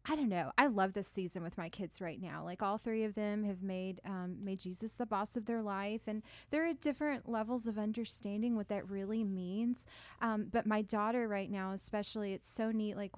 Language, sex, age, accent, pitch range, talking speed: English, female, 30-49, American, 205-245 Hz, 225 wpm